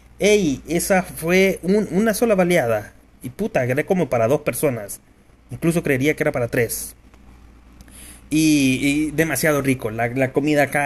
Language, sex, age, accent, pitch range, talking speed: Spanish, male, 30-49, Mexican, 125-170 Hz, 150 wpm